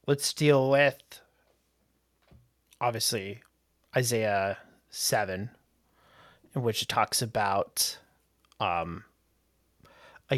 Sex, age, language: male, 30-49, English